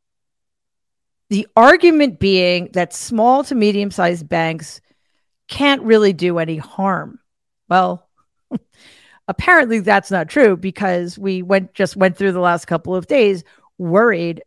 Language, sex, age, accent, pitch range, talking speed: English, female, 40-59, American, 175-210 Hz, 125 wpm